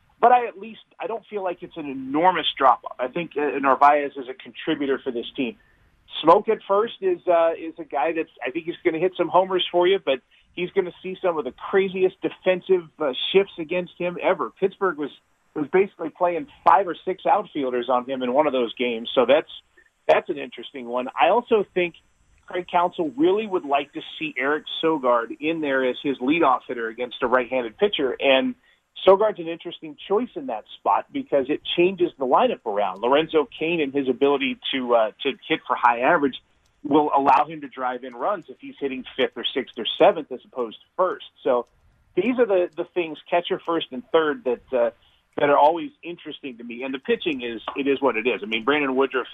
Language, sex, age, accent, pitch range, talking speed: English, male, 30-49, American, 135-185 Hz, 215 wpm